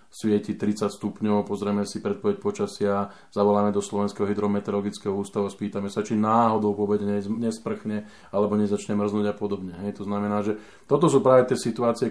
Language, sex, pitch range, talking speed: Slovak, male, 100-115 Hz, 165 wpm